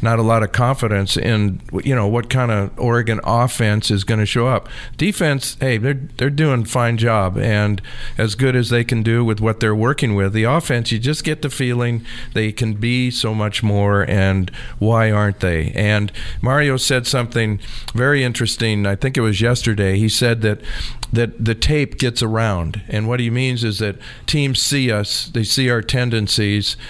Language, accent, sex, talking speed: English, American, male, 190 wpm